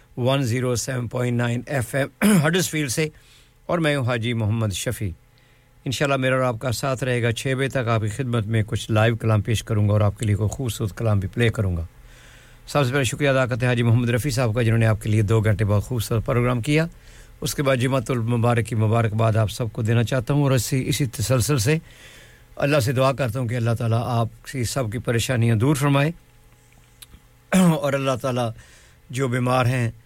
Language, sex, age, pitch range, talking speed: English, male, 50-69, 110-130 Hz, 125 wpm